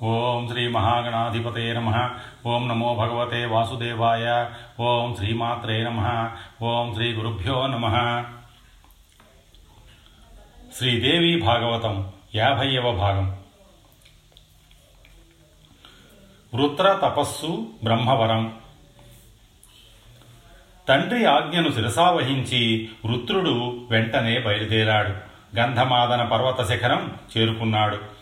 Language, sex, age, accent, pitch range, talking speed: Telugu, male, 40-59, native, 110-125 Hz, 50 wpm